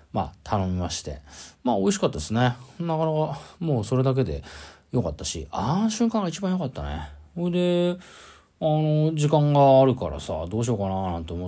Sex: male